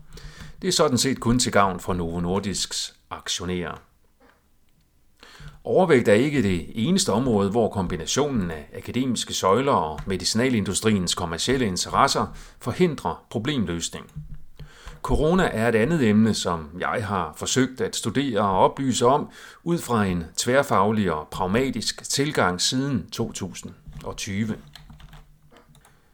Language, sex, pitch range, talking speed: Danish, male, 90-125 Hz, 115 wpm